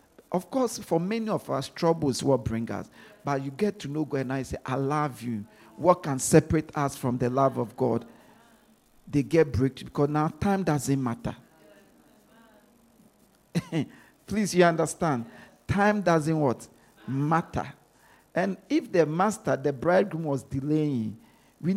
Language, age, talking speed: English, 50-69, 150 wpm